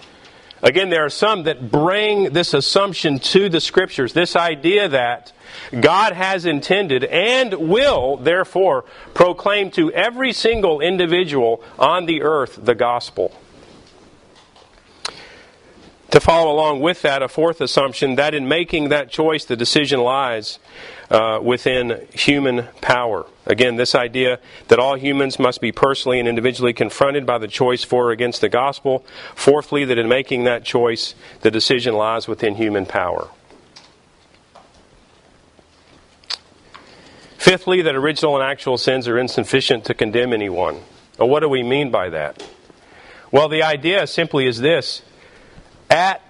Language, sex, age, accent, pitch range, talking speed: English, male, 40-59, American, 125-165 Hz, 135 wpm